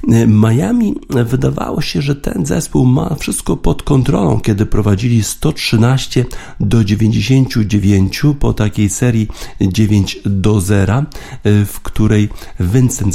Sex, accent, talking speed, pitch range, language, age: male, native, 110 wpm, 95-115 Hz, Polish, 50-69